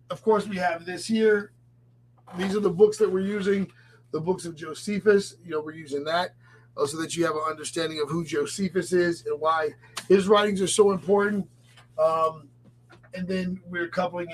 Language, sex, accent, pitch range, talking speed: English, male, American, 145-190 Hz, 185 wpm